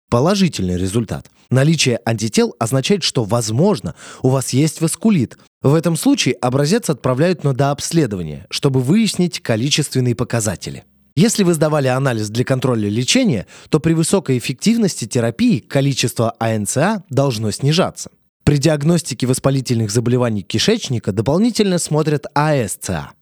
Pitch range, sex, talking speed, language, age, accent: 120-160 Hz, male, 120 wpm, Russian, 20-39, native